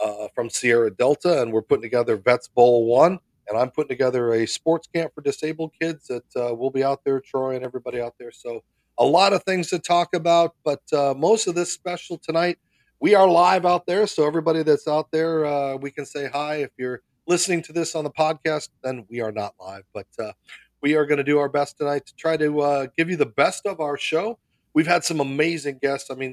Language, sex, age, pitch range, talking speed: English, male, 40-59, 130-165 Hz, 235 wpm